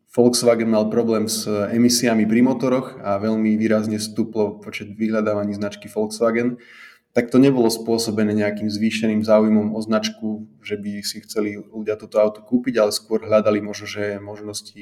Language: Slovak